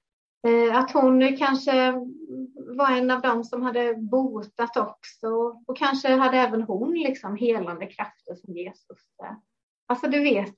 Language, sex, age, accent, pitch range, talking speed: Swedish, female, 30-49, native, 220-260 Hz, 145 wpm